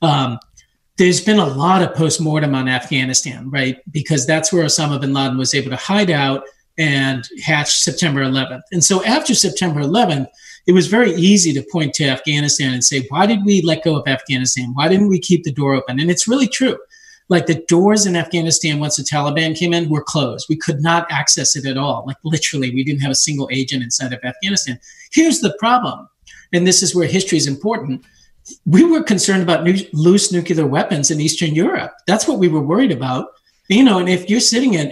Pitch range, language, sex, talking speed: 140-190 Hz, English, male, 210 wpm